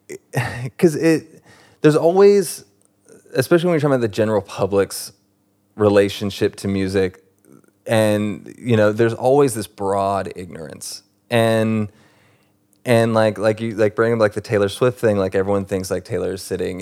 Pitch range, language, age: 100-115 Hz, English, 20-39